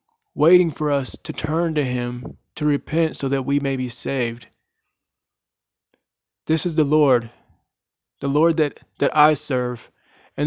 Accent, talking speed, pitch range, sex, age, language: American, 150 wpm, 120-145 Hz, male, 20-39, English